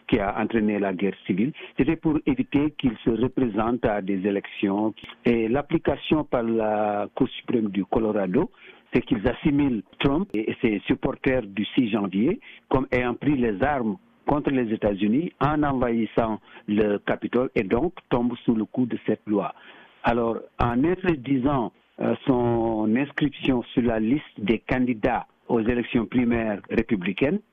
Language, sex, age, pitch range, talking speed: French, male, 60-79, 110-130 Hz, 150 wpm